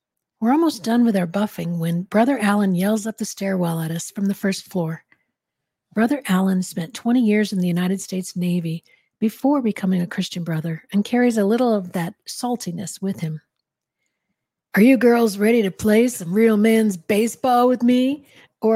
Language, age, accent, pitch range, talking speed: English, 50-69, American, 180-230 Hz, 180 wpm